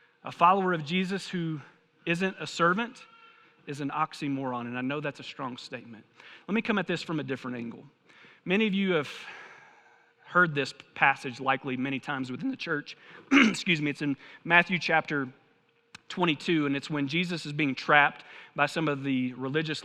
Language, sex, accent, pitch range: English, male, American, 145-190 Hz